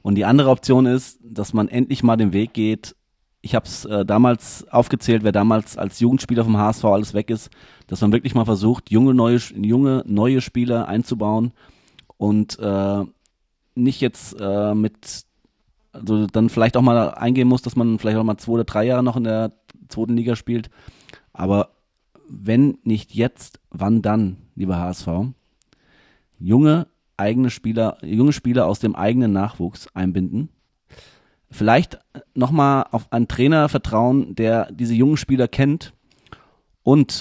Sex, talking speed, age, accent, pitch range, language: male, 155 wpm, 30-49, German, 105-125 Hz, German